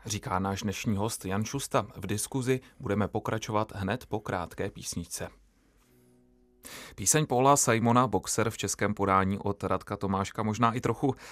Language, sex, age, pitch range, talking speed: Czech, male, 30-49, 95-115 Hz, 145 wpm